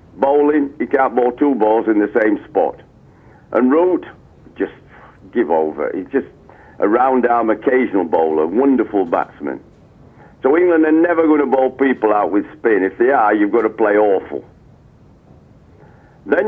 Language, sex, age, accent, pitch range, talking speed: English, male, 60-79, British, 125-190 Hz, 155 wpm